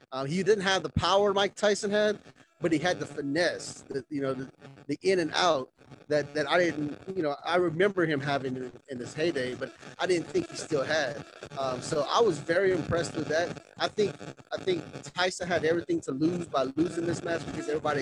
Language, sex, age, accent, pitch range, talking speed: English, male, 30-49, American, 145-180 Hz, 220 wpm